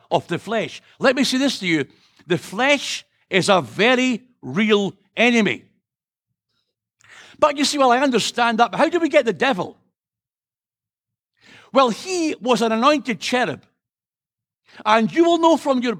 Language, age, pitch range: English, 60-79, 225-290 Hz